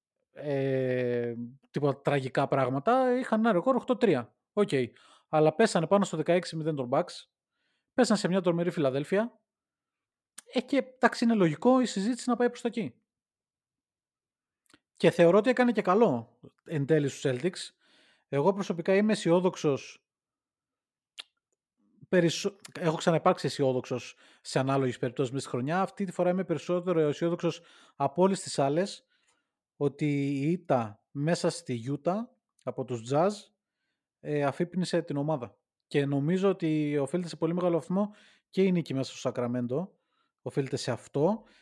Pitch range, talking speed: 135-185 Hz, 135 wpm